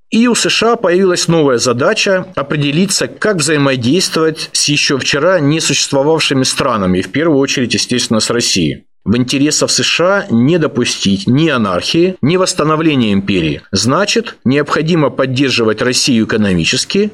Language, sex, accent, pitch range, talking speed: Russian, male, native, 125-175 Hz, 125 wpm